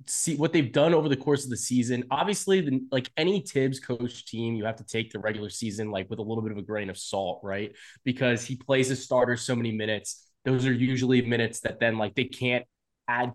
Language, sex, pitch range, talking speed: English, male, 110-135 Hz, 235 wpm